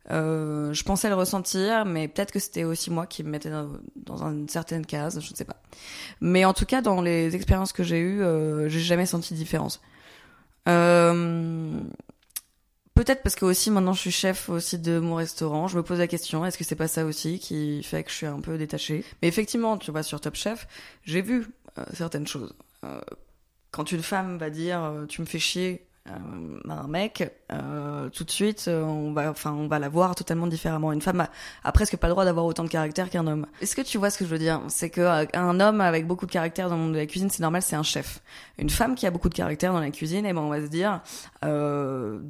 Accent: French